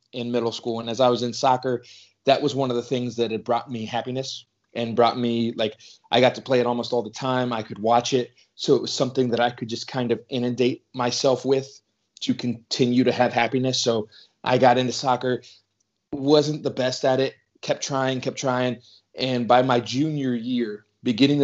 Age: 30-49